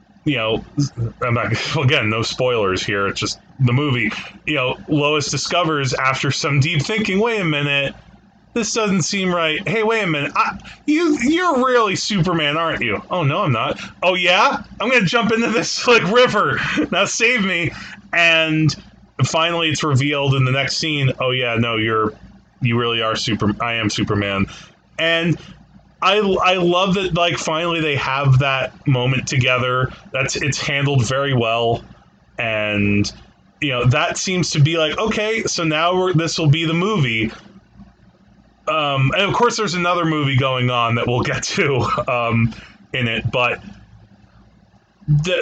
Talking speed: 165 wpm